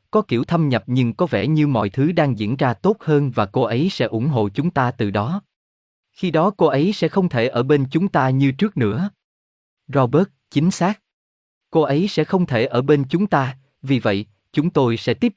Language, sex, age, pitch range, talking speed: Vietnamese, male, 20-39, 110-160 Hz, 225 wpm